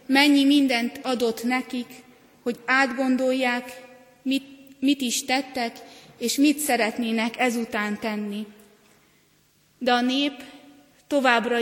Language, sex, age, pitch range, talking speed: Hungarian, female, 30-49, 230-260 Hz, 100 wpm